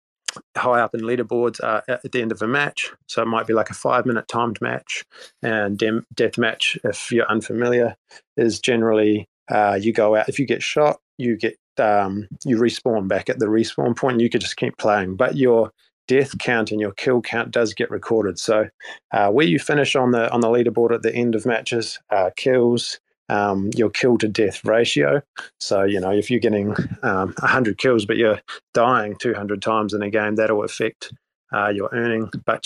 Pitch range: 110-125 Hz